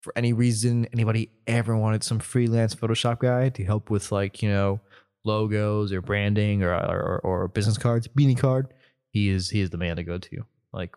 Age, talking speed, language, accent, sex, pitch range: 20-39, 195 wpm, English, American, male, 100-130 Hz